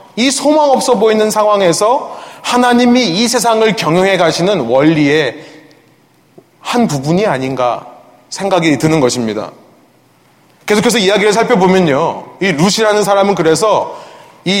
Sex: male